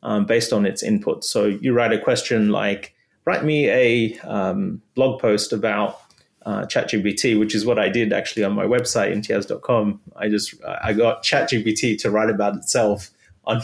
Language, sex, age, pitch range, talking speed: English, male, 30-49, 105-125 Hz, 175 wpm